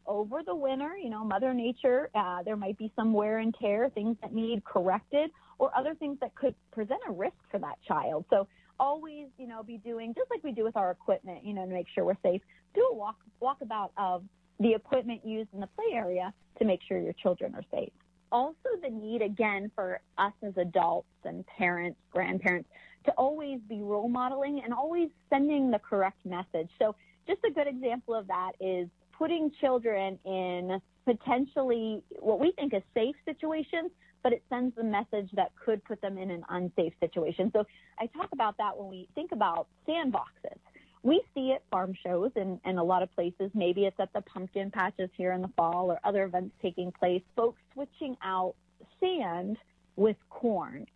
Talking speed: 195 wpm